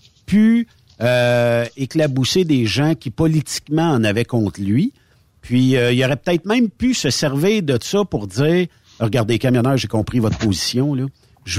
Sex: male